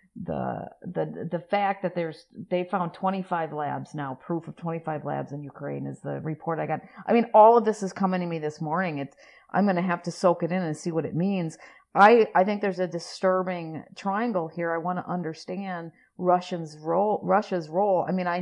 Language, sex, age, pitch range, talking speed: English, female, 50-69, 160-200 Hz, 215 wpm